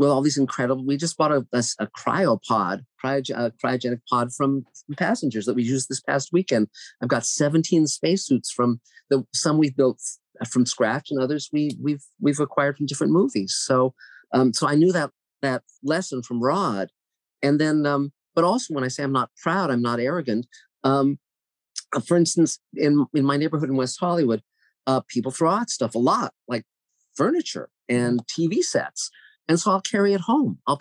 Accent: American